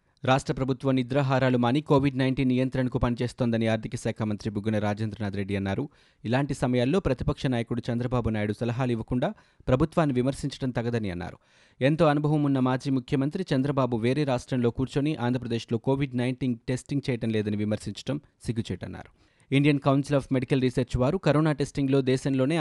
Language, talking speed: Telugu, 145 wpm